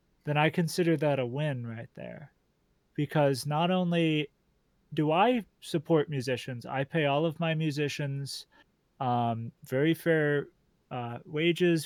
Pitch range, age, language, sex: 140-170 Hz, 30-49, English, male